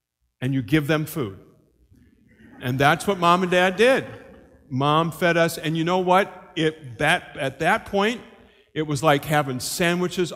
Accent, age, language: American, 50-69, English